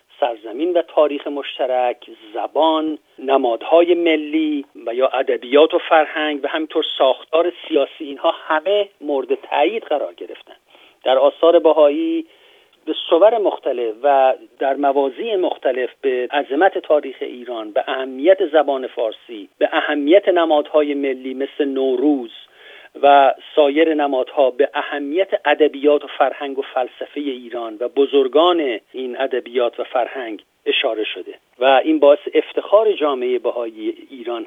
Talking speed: 125 wpm